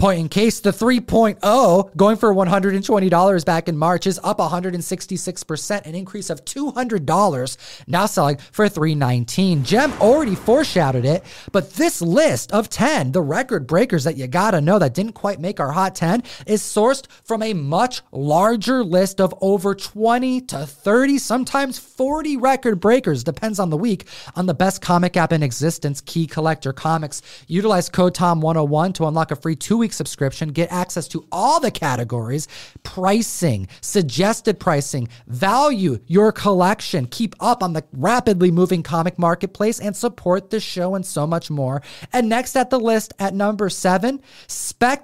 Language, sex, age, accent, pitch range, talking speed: English, male, 30-49, American, 155-210 Hz, 160 wpm